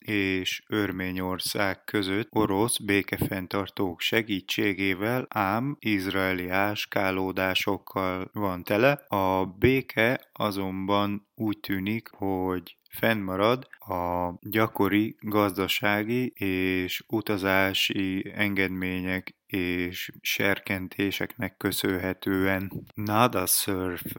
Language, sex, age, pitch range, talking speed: English, male, 20-39, 95-110 Hz, 70 wpm